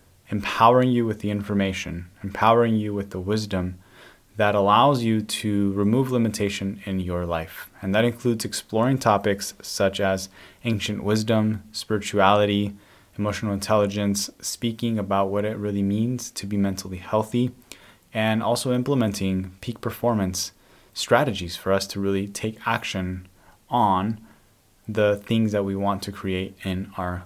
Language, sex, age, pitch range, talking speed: English, male, 20-39, 95-115 Hz, 140 wpm